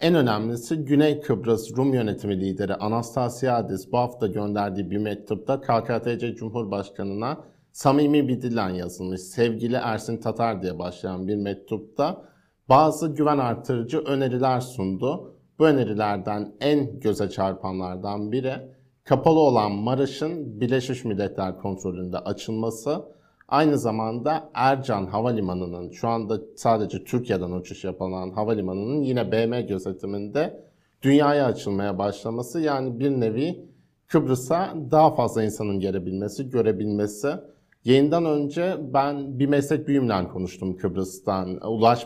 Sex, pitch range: male, 100-140 Hz